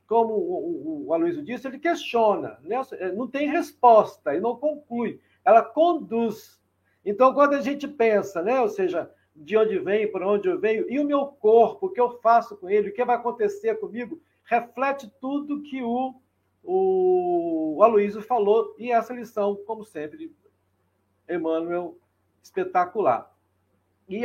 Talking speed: 150 wpm